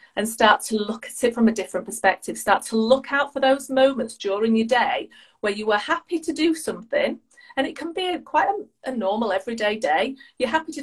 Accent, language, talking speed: British, English, 220 wpm